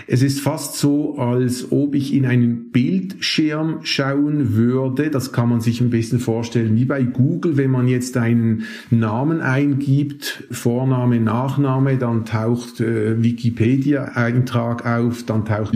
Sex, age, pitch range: male, 50-69, 115-140 Hz